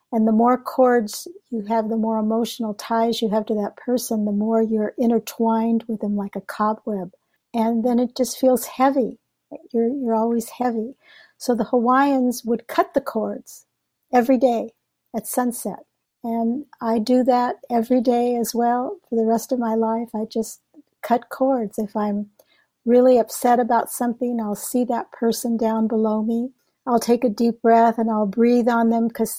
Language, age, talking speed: English, 50-69, 180 wpm